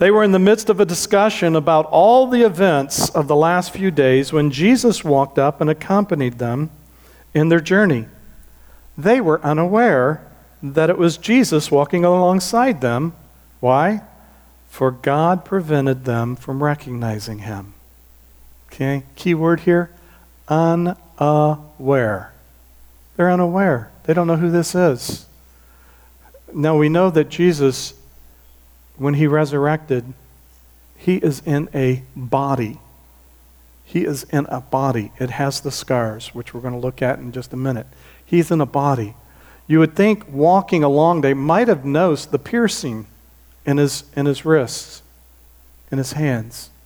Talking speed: 145 wpm